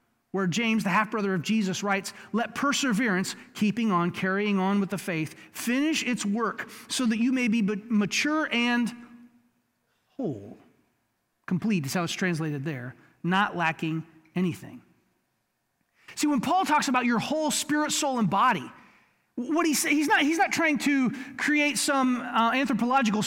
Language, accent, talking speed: English, American, 155 wpm